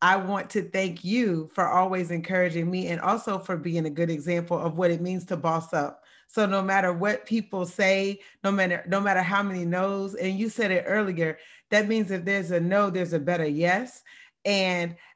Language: English